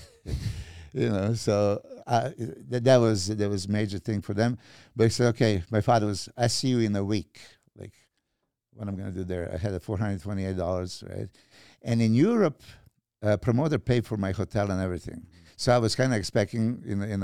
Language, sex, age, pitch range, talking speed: English, male, 60-79, 95-115 Hz, 200 wpm